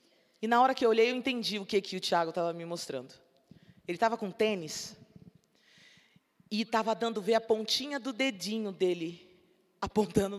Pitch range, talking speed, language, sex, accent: 200-270 Hz, 175 wpm, Portuguese, female, Brazilian